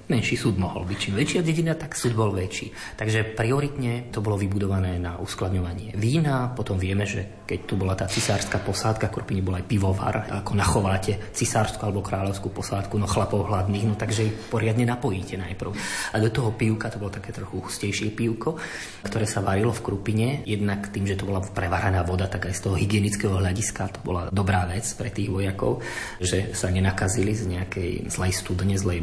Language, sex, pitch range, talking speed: Slovak, male, 95-110 Hz, 190 wpm